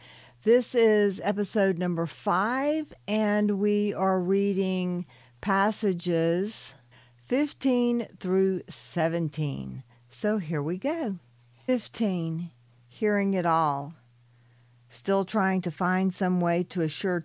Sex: female